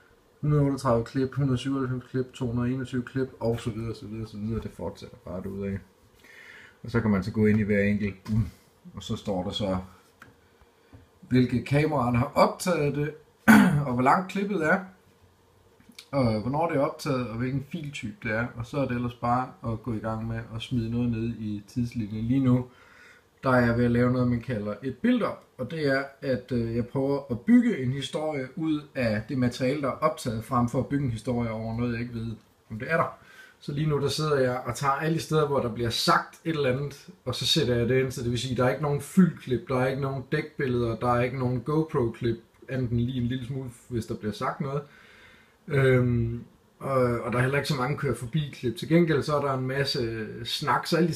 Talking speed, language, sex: 220 wpm, Danish, male